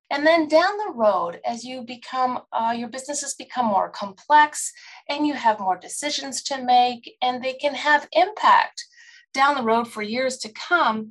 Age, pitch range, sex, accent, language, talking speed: 30-49, 215-300 Hz, female, American, English, 180 wpm